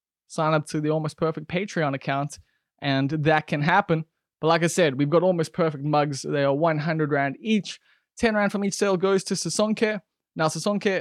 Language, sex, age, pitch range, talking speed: English, male, 20-39, 145-180 Hz, 195 wpm